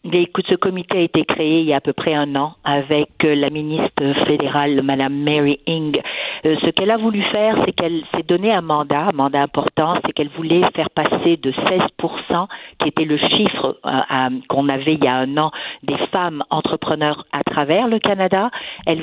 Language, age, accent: French, 50-69, French